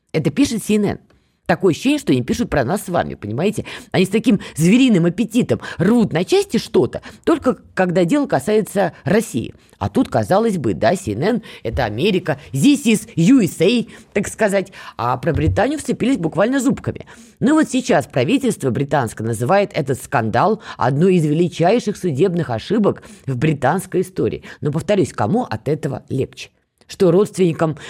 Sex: female